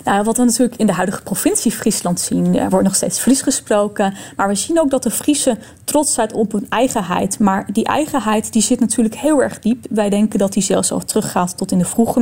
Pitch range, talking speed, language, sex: 195-245 Hz, 235 wpm, Dutch, female